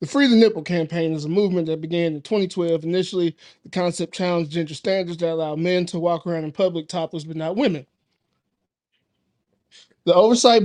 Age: 20-39